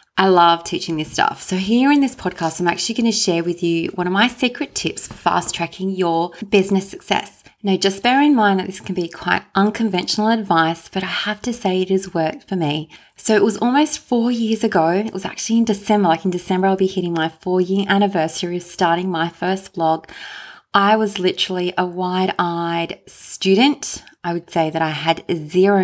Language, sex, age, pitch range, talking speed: English, female, 20-39, 170-210 Hz, 205 wpm